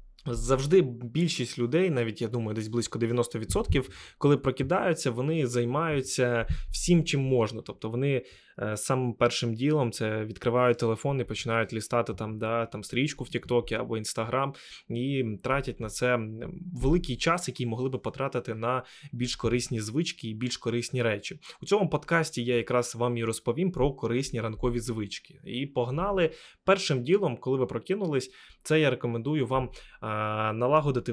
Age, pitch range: 20-39, 115-140 Hz